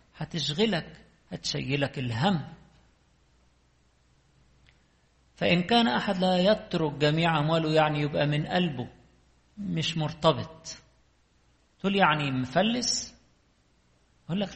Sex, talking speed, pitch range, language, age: male, 85 wpm, 130-185 Hz, English, 50-69